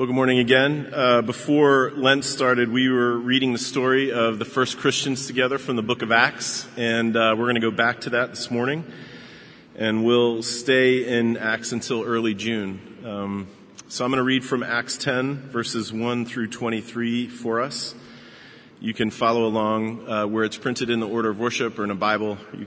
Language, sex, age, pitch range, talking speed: English, male, 40-59, 115-130 Hz, 200 wpm